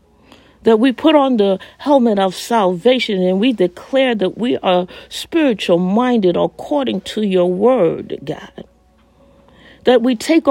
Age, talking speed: 50-69, 130 wpm